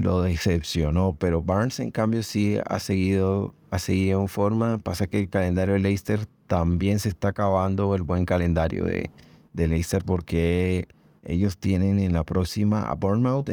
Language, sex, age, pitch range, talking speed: Spanish, male, 30-49, 85-105 Hz, 165 wpm